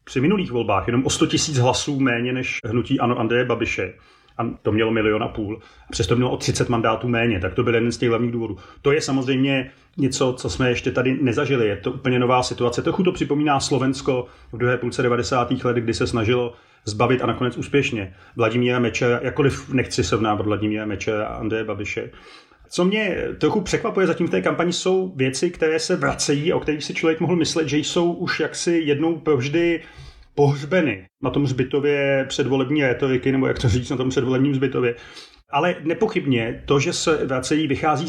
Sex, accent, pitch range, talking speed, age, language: male, native, 120-150 Hz, 185 wpm, 30-49, Czech